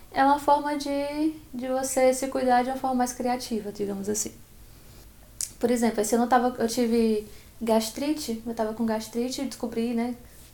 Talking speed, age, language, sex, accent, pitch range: 175 wpm, 10-29, Portuguese, female, Brazilian, 225-260 Hz